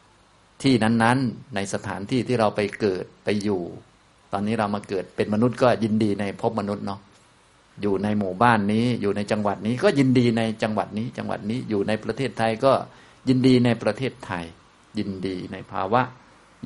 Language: Thai